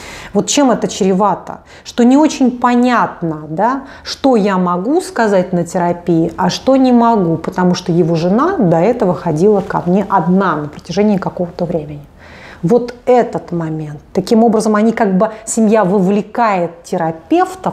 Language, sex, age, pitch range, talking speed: Russian, female, 30-49, 175-245 Hz, 150 wpm